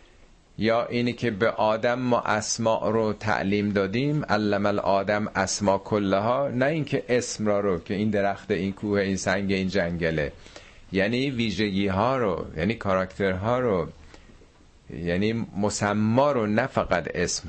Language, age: Persian, 50-69